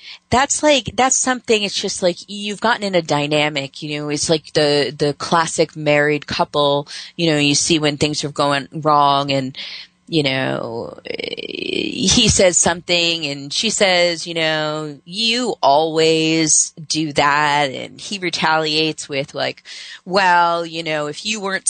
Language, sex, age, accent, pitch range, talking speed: English, female, 30-49, American, 145-195 Hz, 155 wpm